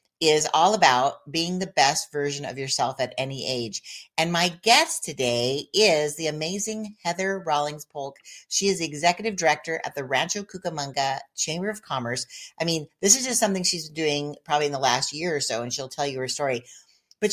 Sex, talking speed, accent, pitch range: female, 195 wpm, American, 135-185 Hz